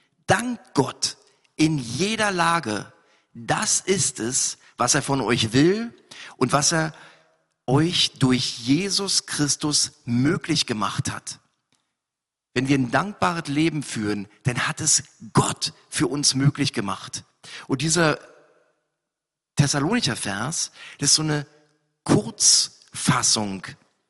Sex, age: male, 50-69